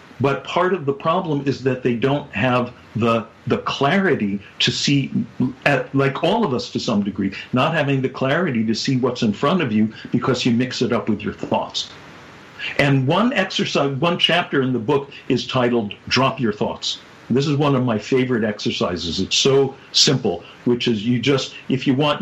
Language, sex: English, male